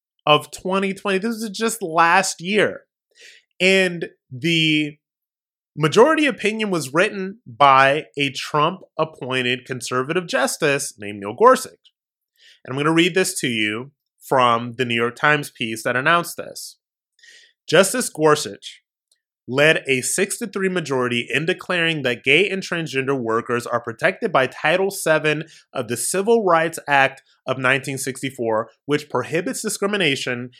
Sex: male